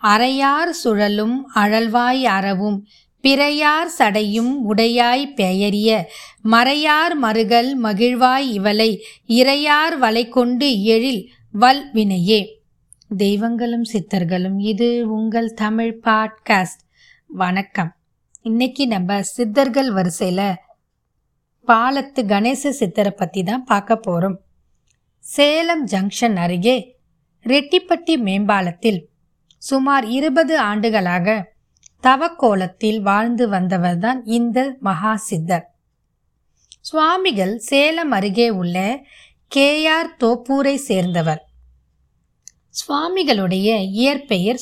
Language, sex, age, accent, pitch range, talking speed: Tamil, female, 20-39, native, 195-265 Hz, 75 wpm